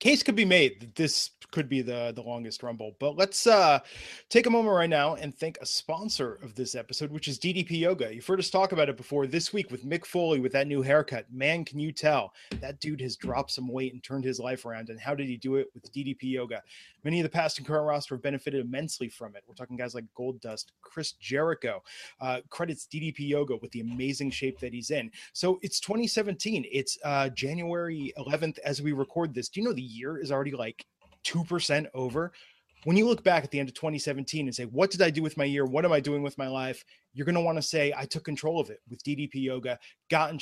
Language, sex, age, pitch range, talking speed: English, male, 30-49, 130-160 Hz, 245 wpm